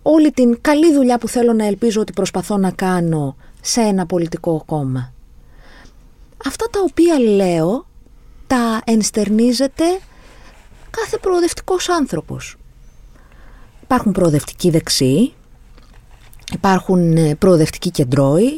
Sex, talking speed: female, 100 wpm